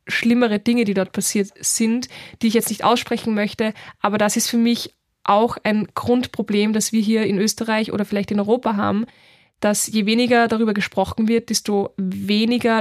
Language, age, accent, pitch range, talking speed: German, 20-39, German, 205-235 Hz, 180 wpm